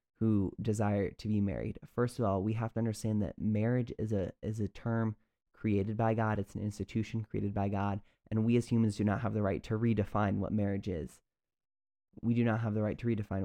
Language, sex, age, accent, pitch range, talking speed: English, male, 20-39, American, 100-115 Hz, 225 wpm